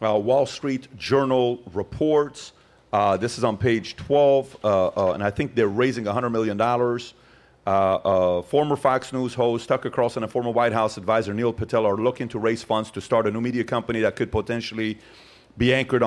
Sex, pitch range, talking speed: male, 110-130 Hz, 190 wpm